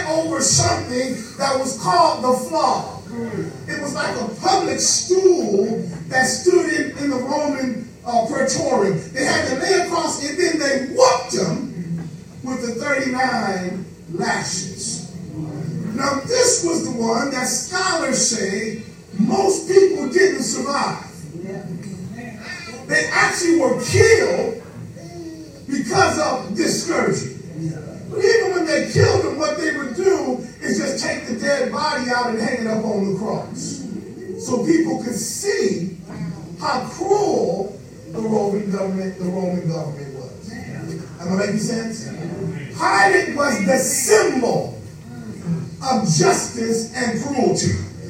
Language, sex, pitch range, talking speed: English, male, 185-300 Hz, 125 wpm